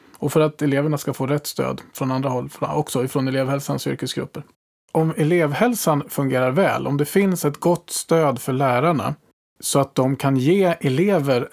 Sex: male